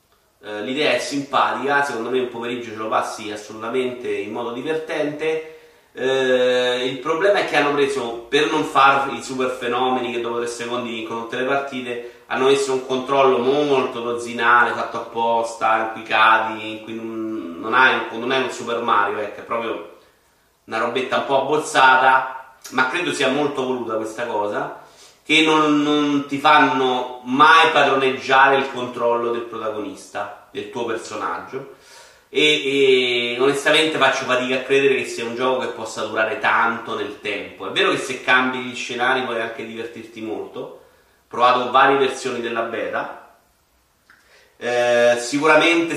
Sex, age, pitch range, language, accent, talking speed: male, 30-49, 115-140 Hz, Italian, native, 150 wpm